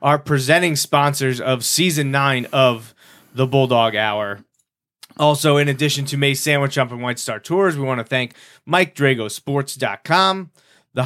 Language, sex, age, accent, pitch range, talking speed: English, male, 30-49, American, 120-140 Hz, 145 wpm